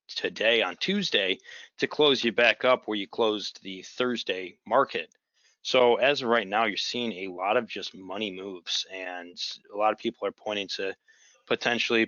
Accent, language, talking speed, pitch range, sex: American, English, 180 wpm, 95-125 Hz, male